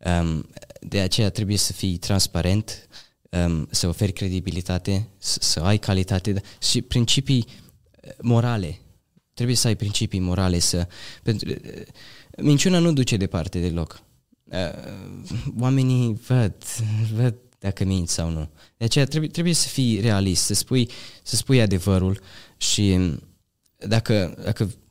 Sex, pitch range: male, 90-115 Hz